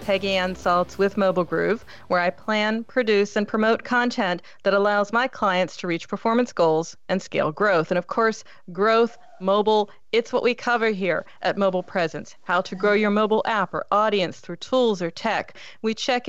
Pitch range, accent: 190-245 Hz, American